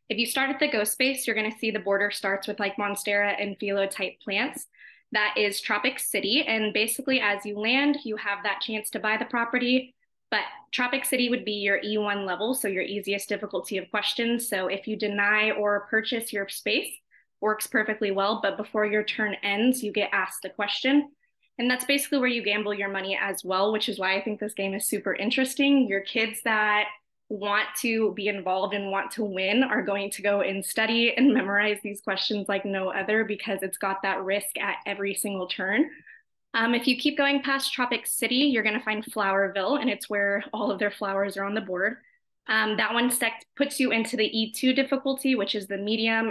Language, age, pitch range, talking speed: English, 20-39, 200-250 Hz, 210 wpm